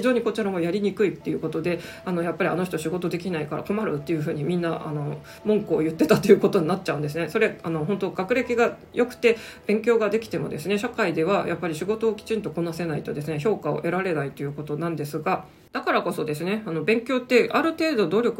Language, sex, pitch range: Japanese, female, 160-220 Hz